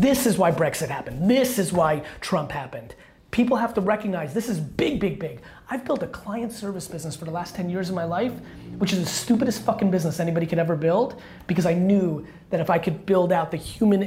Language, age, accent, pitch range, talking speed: English, 30-49, American, 170-200 Hz, 230 wpm